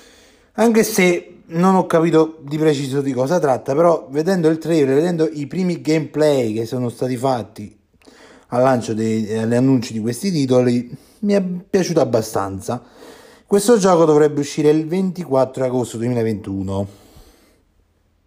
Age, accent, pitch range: 30-49, native, 120-160 Hz